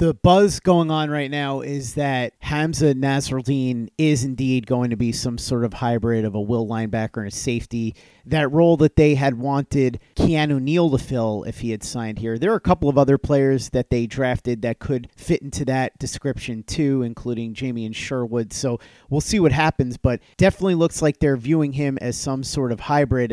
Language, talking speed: English, 205 wpm